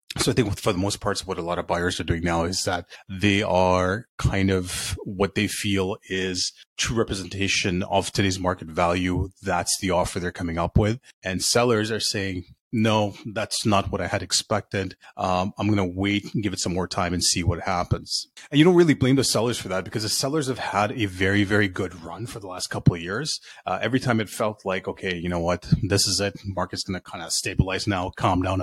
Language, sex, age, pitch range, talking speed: English, male, 30-49, 95-115 Hz, 235 wpm